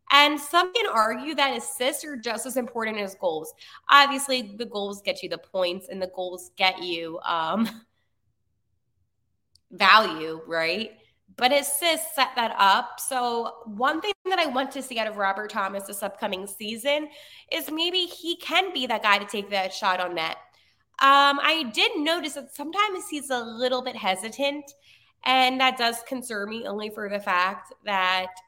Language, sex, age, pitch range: English, female, 20-39, 190-270 Hz